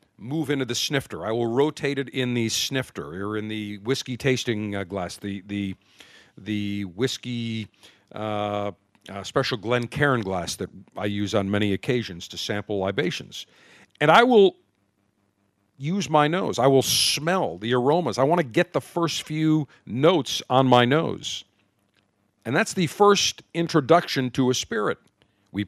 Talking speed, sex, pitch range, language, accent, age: 160 wpm, male, 100-145 Hz, English, American, 50-69